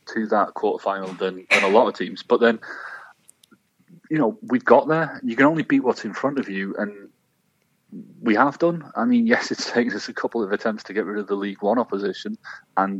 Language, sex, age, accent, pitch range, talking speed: English, male, 30-49, British, 110-155 Hz, 220 wpm